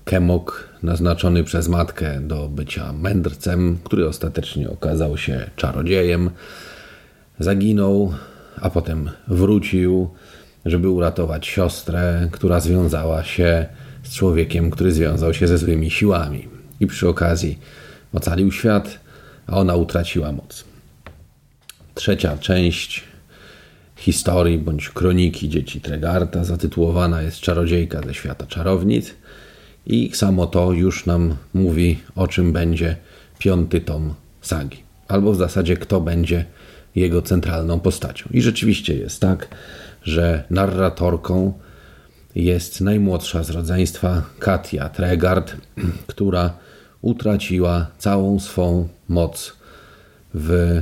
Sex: male